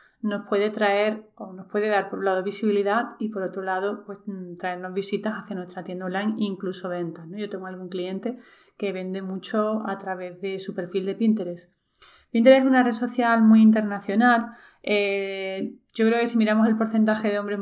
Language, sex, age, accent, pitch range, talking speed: Spanish, female, 30-49, Spanish, 190-225 Hz, 195 wpm